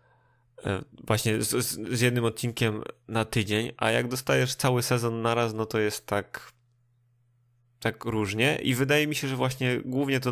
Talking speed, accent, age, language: 155 wpm, native, 20-39, Polish